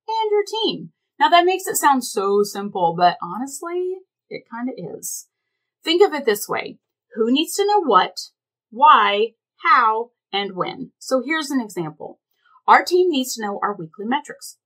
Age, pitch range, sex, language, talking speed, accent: 30-49, 205-320 Hz, female, English, 170 wpm, American